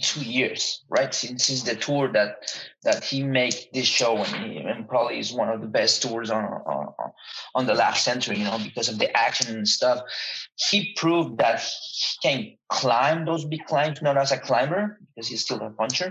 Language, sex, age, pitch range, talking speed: English, male, 30-49, 115-135 Hz, 205 wpm